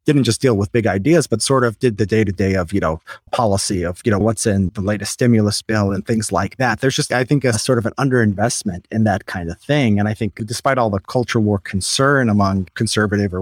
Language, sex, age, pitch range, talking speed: English, male, 30-49, 100-120 Hz, 250 wpm